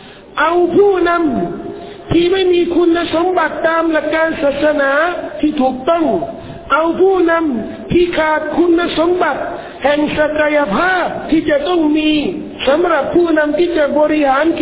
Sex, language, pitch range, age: male, Thai, 275-335 Hz, 50-69